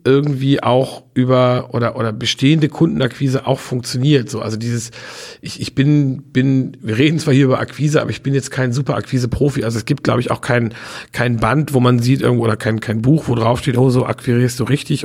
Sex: male